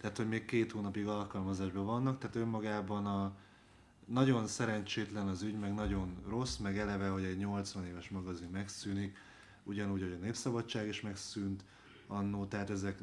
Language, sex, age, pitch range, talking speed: Hungarian, male, 30-49, 100-120 Hz, 155 wpm